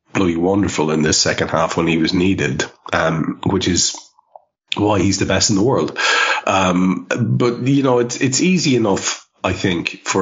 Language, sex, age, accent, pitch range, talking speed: English, male, 30-49, Irish, 90-110 Hz, 180 wpm